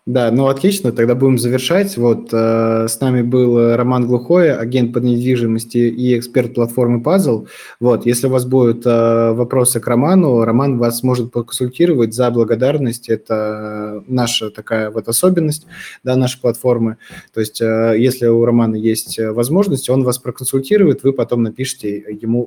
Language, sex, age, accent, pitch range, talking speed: Russian, male, 20-39, native, 115-130 Hz, 155 wpm